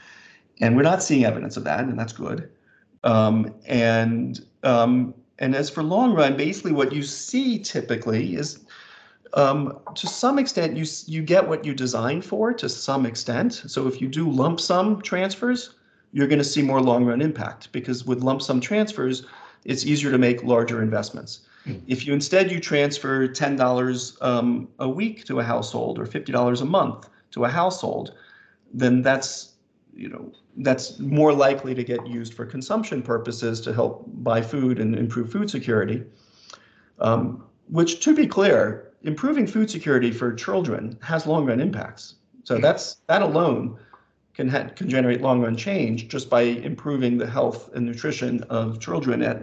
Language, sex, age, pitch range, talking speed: English, male, 40-59, 120-150 Hz, 165 wpm